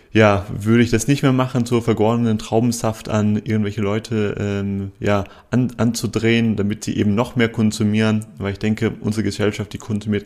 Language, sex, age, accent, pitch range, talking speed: German, male, 30-49, German, 105-125 Hz, 180 wpm